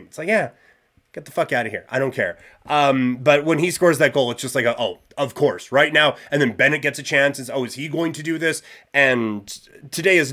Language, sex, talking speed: English, male, 250 wpm